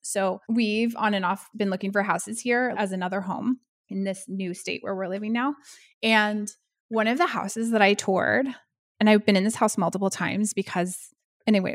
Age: 20-39